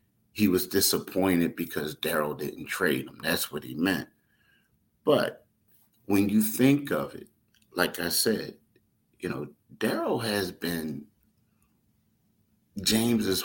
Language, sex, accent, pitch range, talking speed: English, male, American, 80-105 Hz, 120 wpm